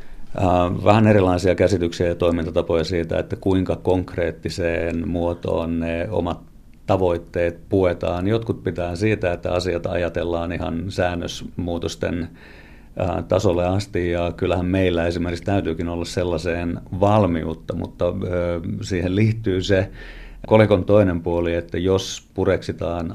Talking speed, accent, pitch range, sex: 110 wpm, native, 85-95 Hz, male